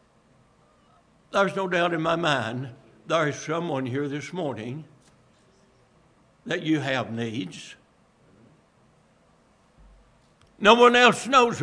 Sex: male